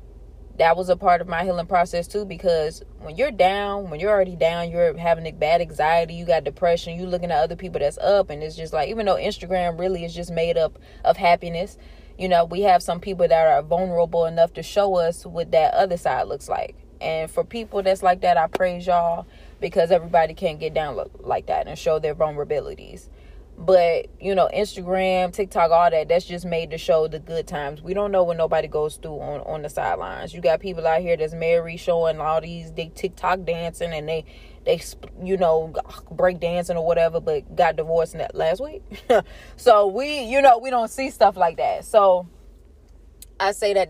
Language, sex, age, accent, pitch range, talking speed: English, female, 20-39, American, 160-185 Hz, 210 wpm